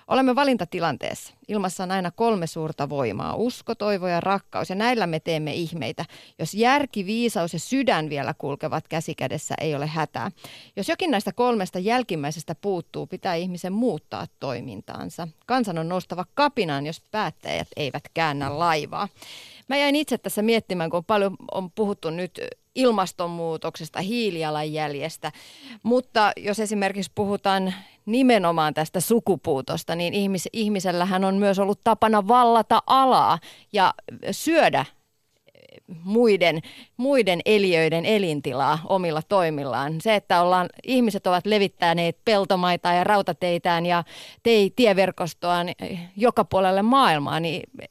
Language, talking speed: Finnish, 125 wpm